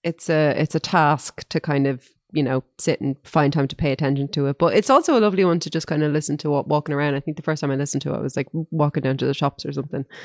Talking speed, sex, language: 305 wpm, female, English